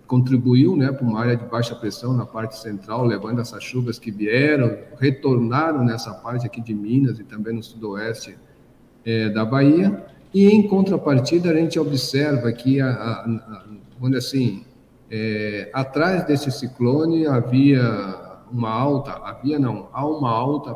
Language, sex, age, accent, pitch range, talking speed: Portuguese, male, 50-69, Brazilian, 115-150 Hz, 150 wpm